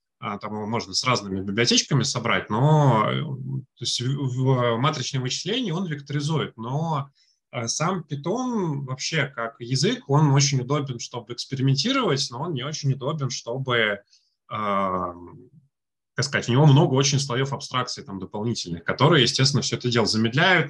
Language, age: Russian, 20-39